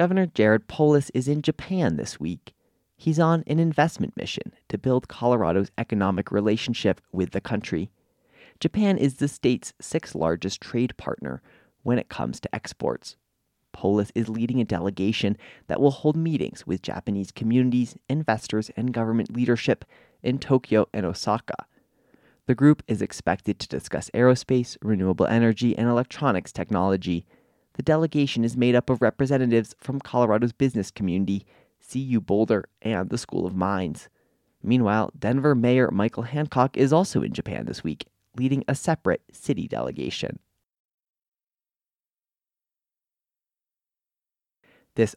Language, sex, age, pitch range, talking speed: English, male, 30-49, 105-135 Hz, 135 wpm